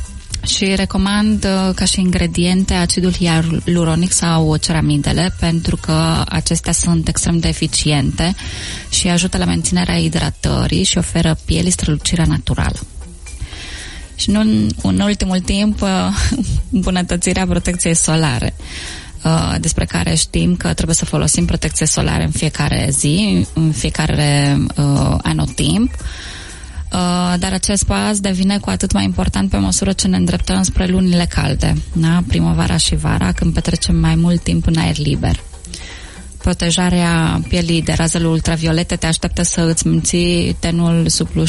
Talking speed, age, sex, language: 135 wpm, 20-39, female, Spanish